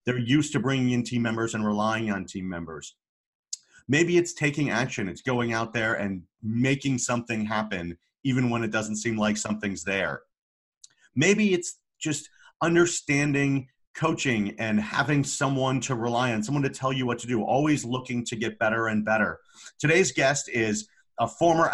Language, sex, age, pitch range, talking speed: English, male, 40-59, 110-130 Hz, 170 wpm